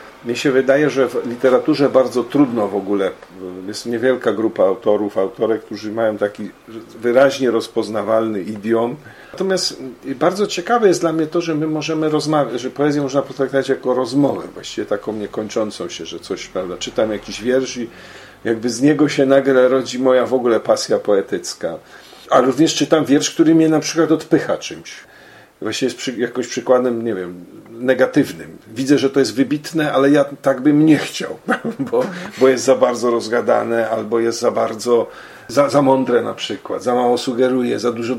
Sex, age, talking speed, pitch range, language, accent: male, 50-69, 170 wpm, 115-145 Hz, Polish, native